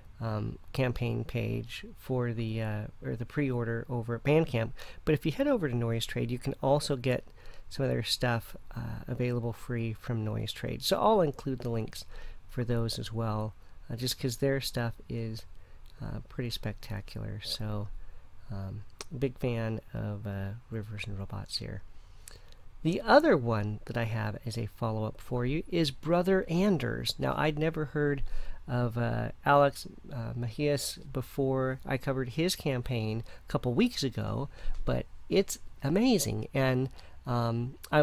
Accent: American